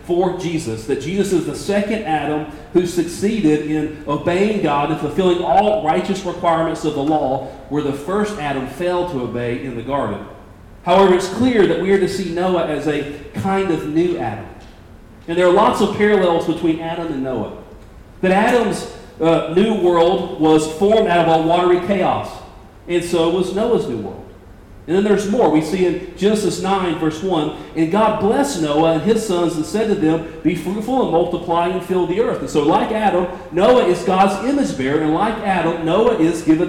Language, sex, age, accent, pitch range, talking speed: English, male, 40-59, American, 150-195 Hz, 195 wpm